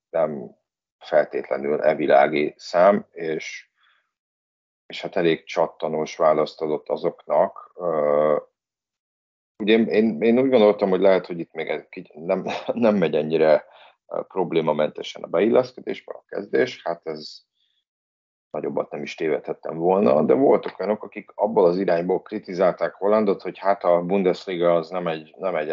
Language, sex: Hungarian, male